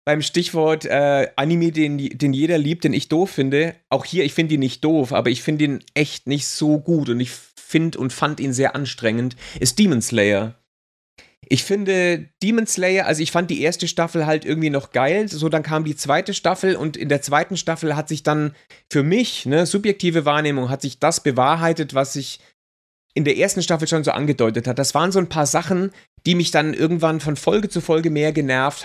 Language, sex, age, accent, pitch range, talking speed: German, male, 30-49, German, 135-170 Hz, 210 wpm